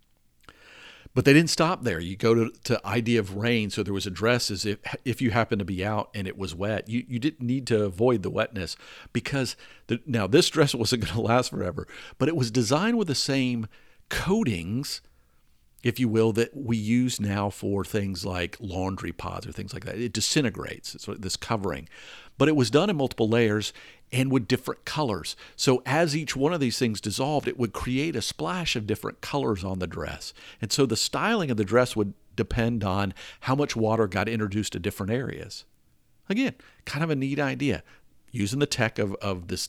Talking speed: 205 wpm